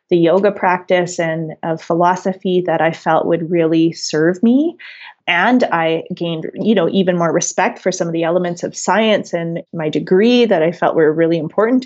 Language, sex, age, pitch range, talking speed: English, female, 30-49, 170-205 Hz, 185 wpm